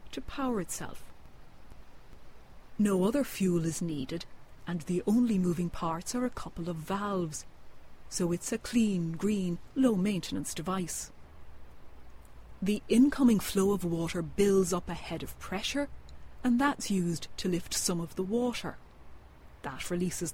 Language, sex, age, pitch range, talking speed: English, female, 40-59, 165-210 Hz, 140 wpm